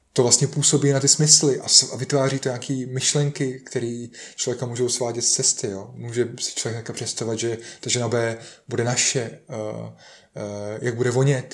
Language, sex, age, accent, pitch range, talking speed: Czech, male, 20-39, native, 120-145 Hz, 180 wpm